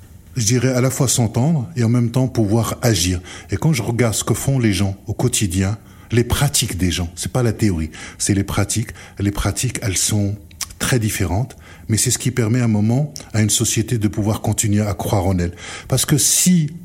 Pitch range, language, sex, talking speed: 100-130 Hz, French, male, 220 wpm